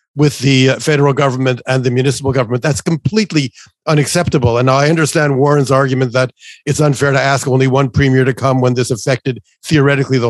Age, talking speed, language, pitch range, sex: 50-69, 200 wpm, English, 130-155 Hz, male